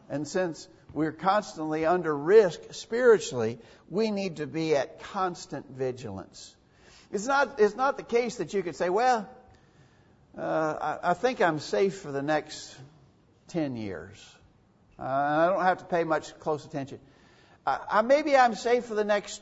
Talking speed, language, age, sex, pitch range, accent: 165 wpm, English, 60-79, male, 130-185 Hz, American